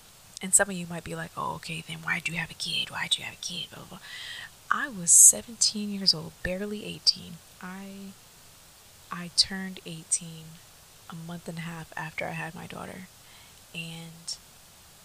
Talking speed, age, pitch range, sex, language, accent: 170 wpm, 20-39, 160-185 Hz, female, English, American